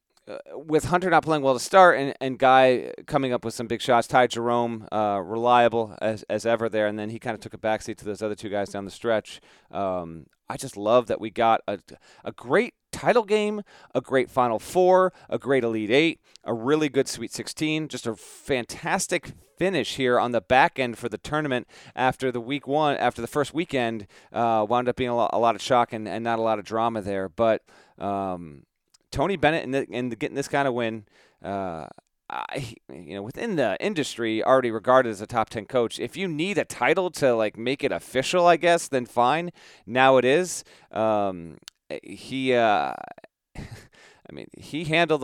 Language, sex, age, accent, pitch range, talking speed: English, male, 40-59, American, 105-130 Hz, 205 wpm